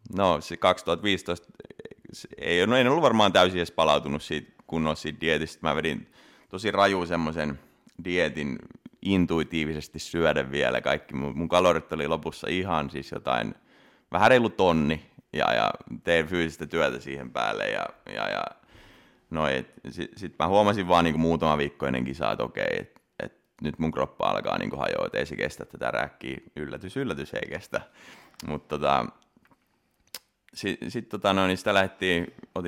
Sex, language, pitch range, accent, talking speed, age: male, Finnish, 80-105 Hz, native, 155 wpm, 30-49